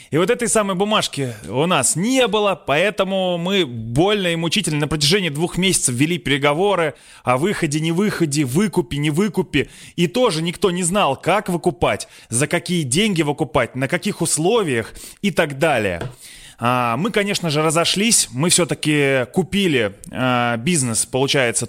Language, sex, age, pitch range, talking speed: Russian, male, 20-39, 130-175 Hz, 150 wpm